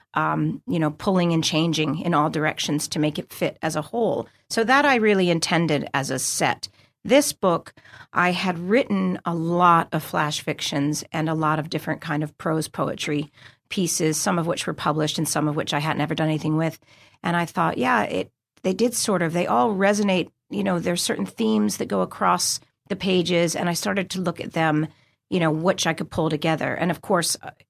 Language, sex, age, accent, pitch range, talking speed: English, female, 40-59, American, 155-195 Hz, 215 wpm